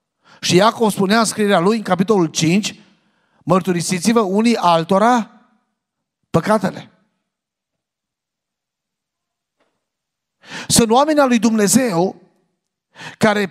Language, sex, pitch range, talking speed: Romanian, male, 145-195 Hz, 85 wpm